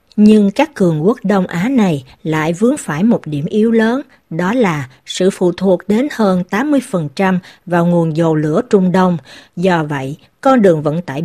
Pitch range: 170-225 Hz